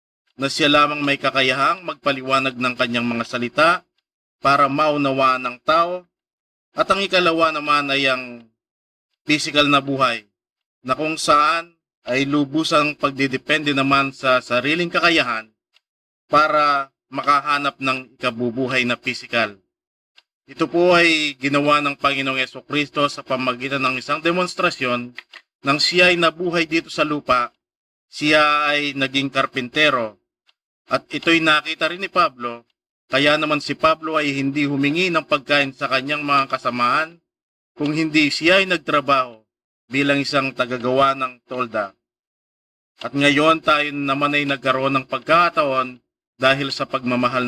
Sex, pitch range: male, 130-155 Hz